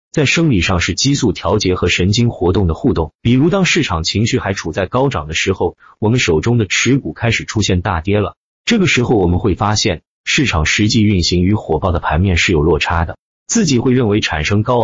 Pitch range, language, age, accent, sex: 85-115 Hz, Chinese, 30-49, native, male